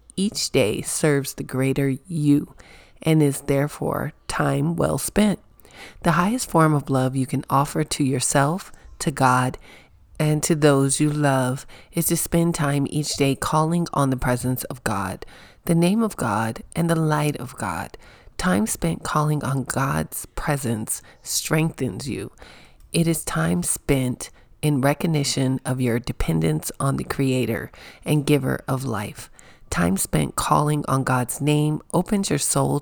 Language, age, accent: English, 40-59, American